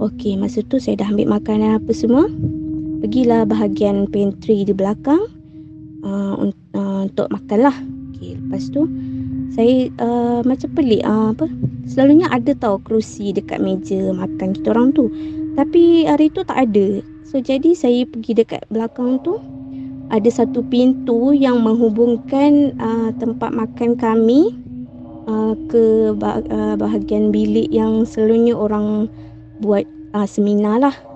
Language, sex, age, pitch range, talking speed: Malay, female, 20-39, 200-265 Hz, 135 wpm